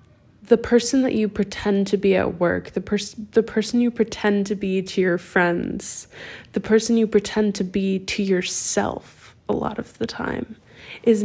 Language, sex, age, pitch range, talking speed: English, female, 20-39, 175-215 Hz, 180 wpm